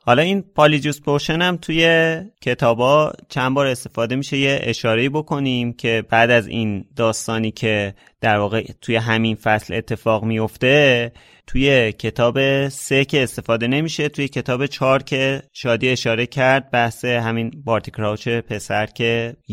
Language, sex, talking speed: Persian, male, 140 wpm